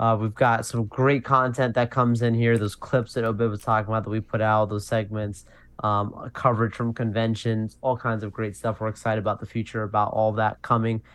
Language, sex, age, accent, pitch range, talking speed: English, male, 20-39, American, 110-125 Hz, 220 wpm